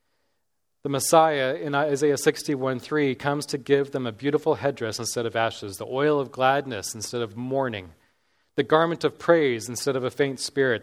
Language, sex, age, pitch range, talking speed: English, male, 30-49, 120-145 Hz, 175 wpm